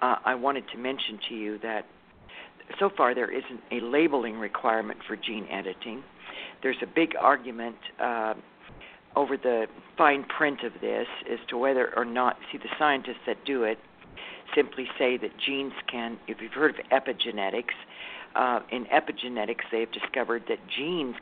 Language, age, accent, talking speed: English, 60-79, American, 160 wpm